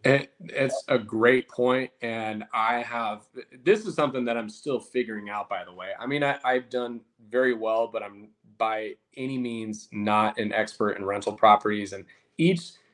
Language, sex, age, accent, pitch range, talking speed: English, male, 20-39, American, 110-130 Hz, 175 wpm